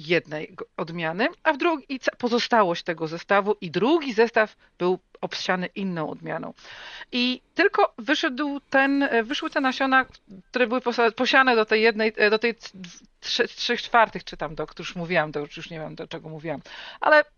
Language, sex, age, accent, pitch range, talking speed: Polish, female, 40-59, native, 165-225 Hz, 150 wpm